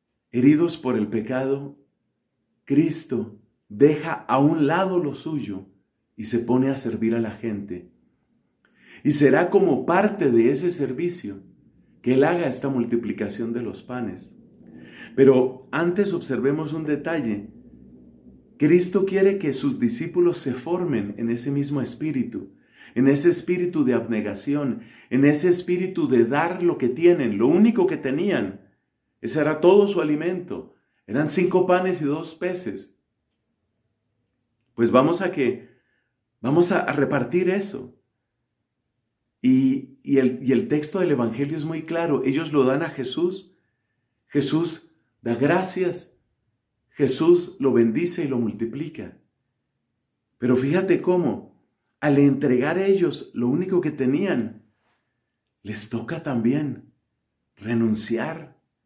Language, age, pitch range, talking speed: Spanish, 40-59, 120-175 Hz, 130 wpm